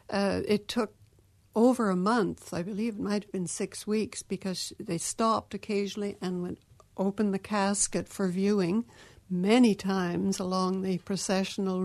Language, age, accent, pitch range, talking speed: English, 60-79, American, 180-210 Hz, 150 wpm